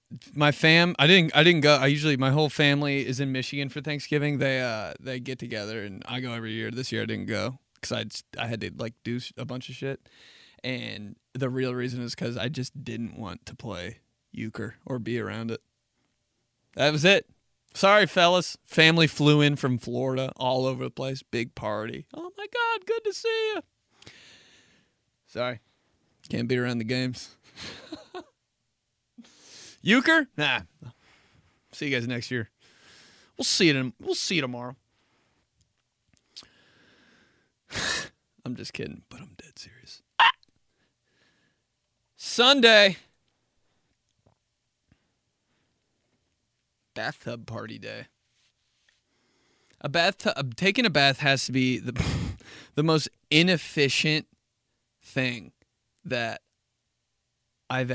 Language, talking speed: English, 135 wpm